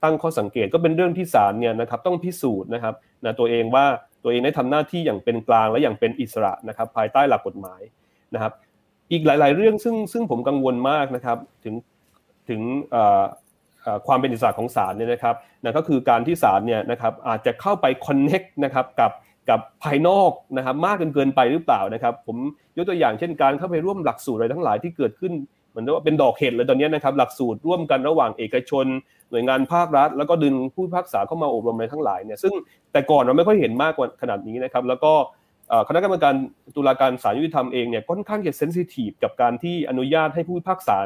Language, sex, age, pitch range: Thai, male, 30-49, 120-165 Hz